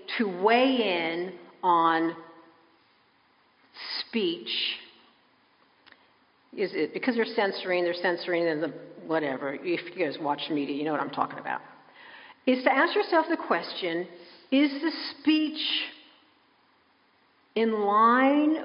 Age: 50-69